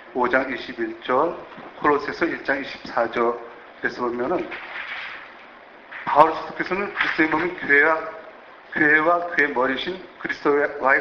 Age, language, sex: 40-59, Korean, male